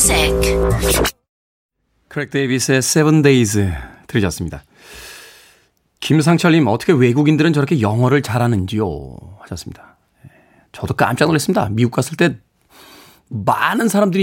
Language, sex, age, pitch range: Korean, male, 30-49, 110-150 Hz